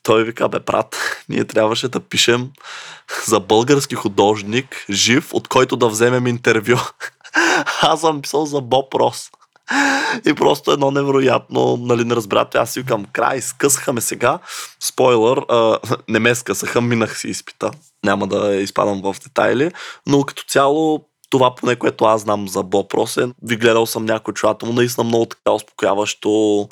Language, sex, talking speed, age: Bulgarian, male, 155 wpm, 20-39